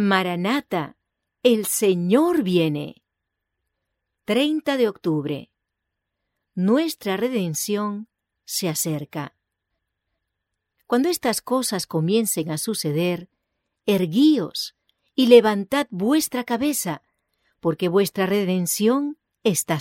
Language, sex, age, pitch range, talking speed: English, female, 50-69, 150-225 Hz, 80 wpm